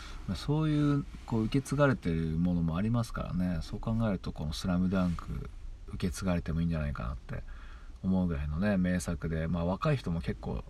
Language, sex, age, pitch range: Japanese, male, 40-59, 75-105 Hz